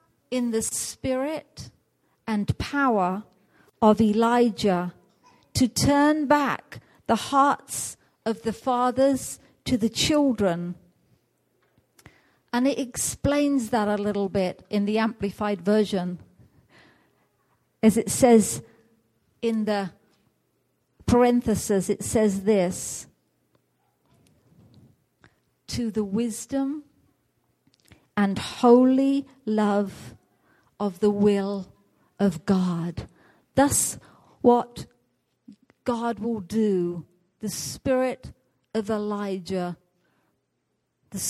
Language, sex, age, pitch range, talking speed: English, female, 50-69, 200-255 Hz, 85 wpm